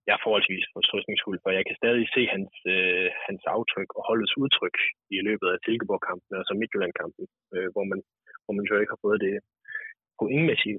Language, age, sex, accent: Danish, 20-39, male, native